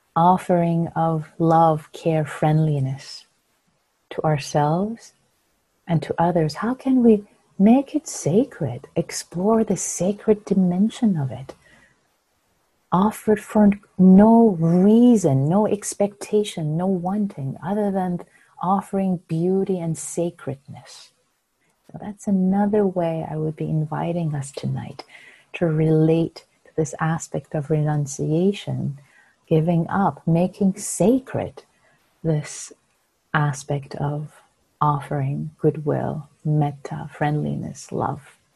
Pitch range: 155-210 Hz